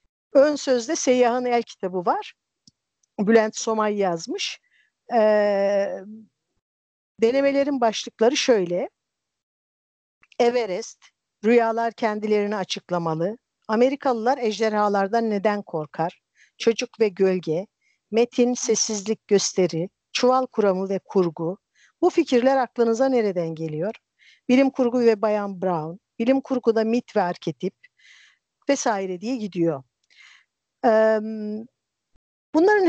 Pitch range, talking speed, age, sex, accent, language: 195-250 Hz, 95 wpm, 50-69, female, native, Turkish